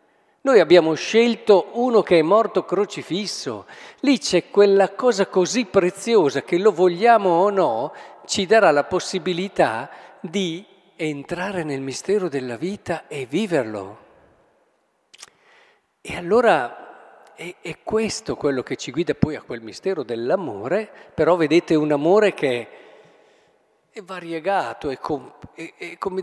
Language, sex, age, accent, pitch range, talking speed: Italian, male, 50-69, native, 150-225 Hz, 130 wpm